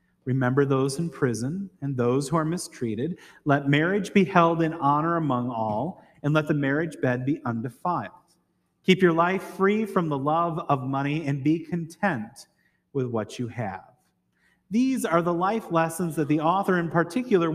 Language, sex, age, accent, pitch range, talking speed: English, male, 30-49, American, 135-180 Hz, 170 wpm